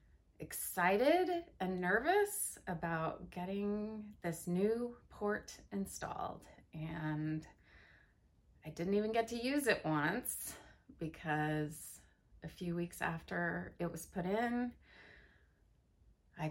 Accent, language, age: American, English, 30-49